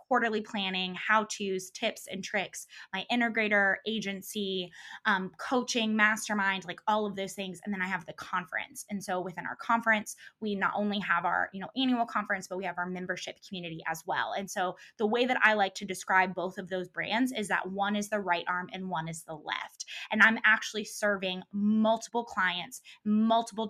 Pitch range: 185-220 Hz